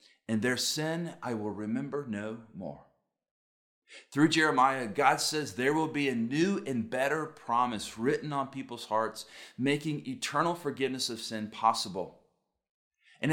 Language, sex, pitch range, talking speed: English, male, 125-180 Hz, 140 wpm